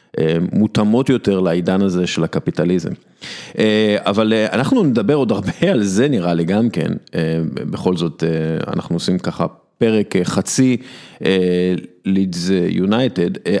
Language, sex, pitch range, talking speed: Hebrew, male, 90-120 Hz, 110 wpm